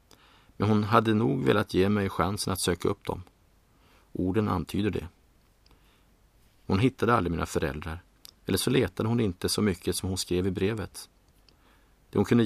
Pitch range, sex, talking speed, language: 90-100 Hz, male, 170 wpm, Swedish